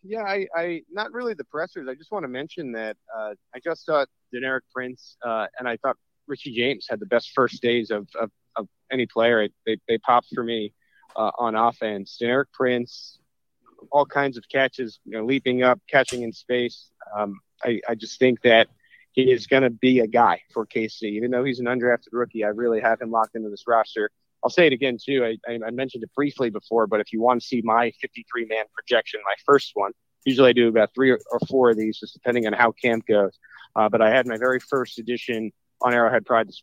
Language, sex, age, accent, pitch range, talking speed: English, male, 30-49, American, 115-130 Hz, 220 wpm